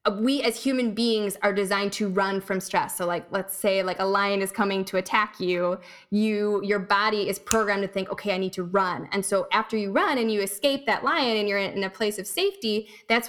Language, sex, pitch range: English, female, 190-225 Hz